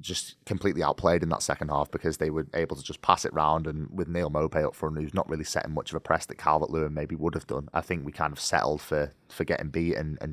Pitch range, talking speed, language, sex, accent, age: 80-95 Hz, 280 wpm, English, male, British, 20-39